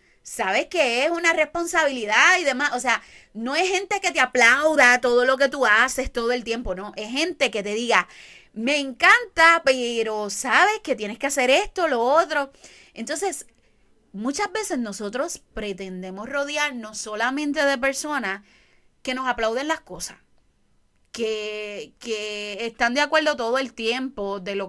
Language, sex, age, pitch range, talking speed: Spanish, female, 30-49, 225-300 Hz, 155 wpm